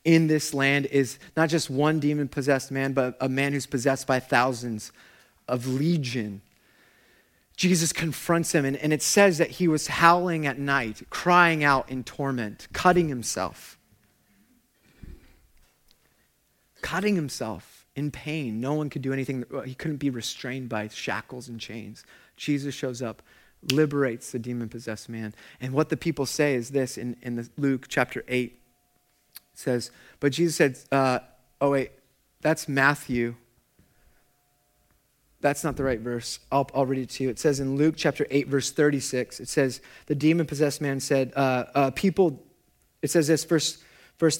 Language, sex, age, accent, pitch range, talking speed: English, male, 30-49, American, 125-165 Hz, 160 wpm